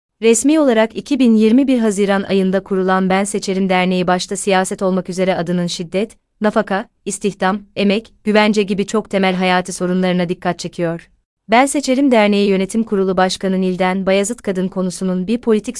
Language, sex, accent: Turkish, female, native